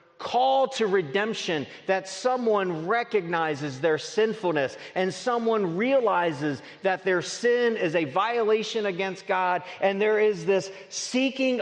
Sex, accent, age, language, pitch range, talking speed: male, American, 40-59, English, 150-220 Hz, 125 wpm